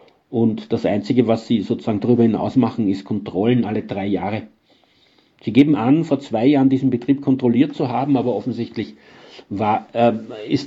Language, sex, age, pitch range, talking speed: German, male, 50-69, 115-135 Hz, 170 wpm